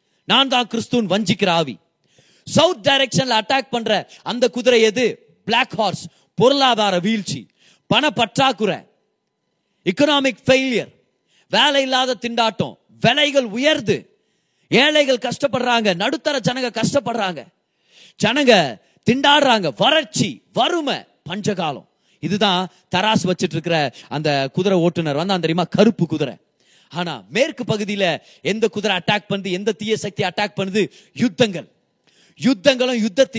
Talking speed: 65 wpm